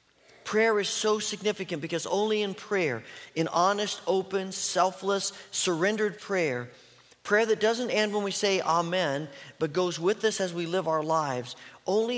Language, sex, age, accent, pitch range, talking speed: English, male, 40-59, American, 160-205 Hz, 160 wpm